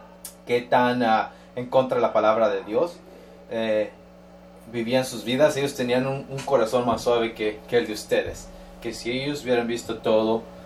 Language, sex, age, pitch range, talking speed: English, male, 20-39, 110-125 Hz, 180 wpm